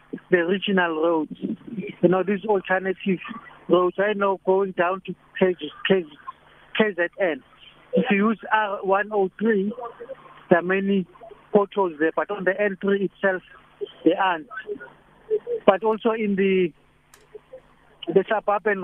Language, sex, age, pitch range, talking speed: English, male, 60-79, 175-210 Hz, 120 wpm